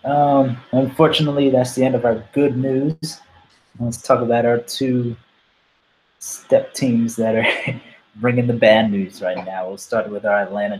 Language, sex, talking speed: English, male, 160 wpm